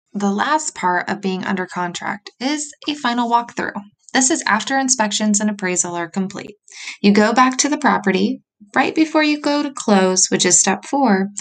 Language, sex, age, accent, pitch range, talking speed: English, female, 20-39, American, 190-255 Hz, 185 wpm